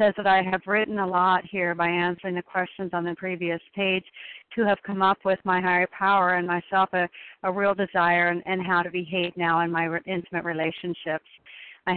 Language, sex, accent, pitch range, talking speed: English, female, American, 175-200 Hz, 210 wpm